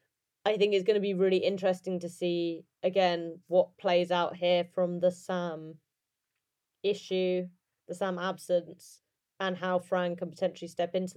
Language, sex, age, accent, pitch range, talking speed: English, female, 20-39, British, 170-195 Hz, 155 wpm